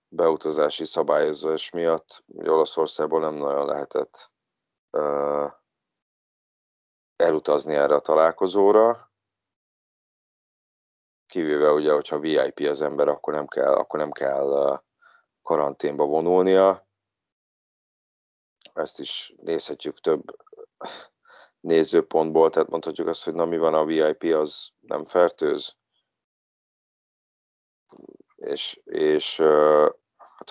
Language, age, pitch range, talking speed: Hungarian, 30-49, 75-110 Hz, 95 wpm